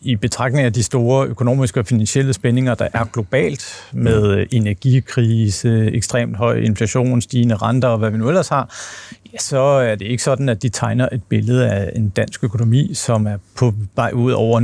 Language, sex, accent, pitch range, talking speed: Danish, male, native, 110-130 Hz, 185 wpm